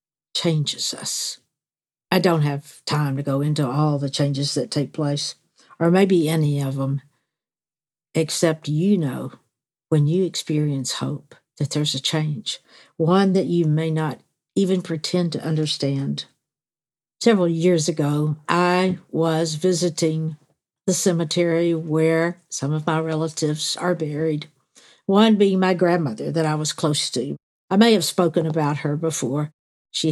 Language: English